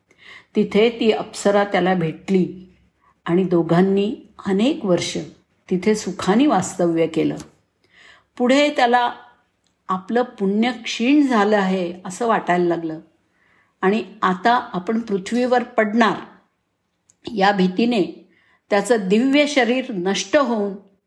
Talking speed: 100 wpm